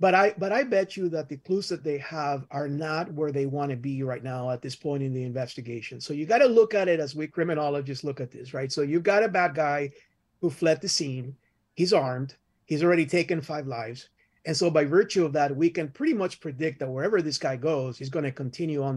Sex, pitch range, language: male, 140-170 Hz, English